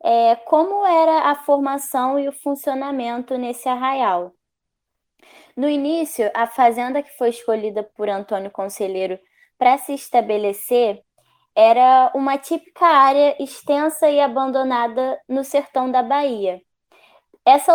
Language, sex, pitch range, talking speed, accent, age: Portuguese, female, 230-280 Hz, 115 wpm, Brazilian, 10-29